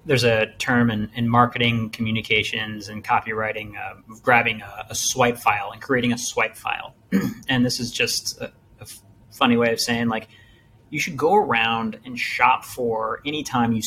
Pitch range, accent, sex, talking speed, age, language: 115-130 Hz, American, male, 175 wpm, 30-49, English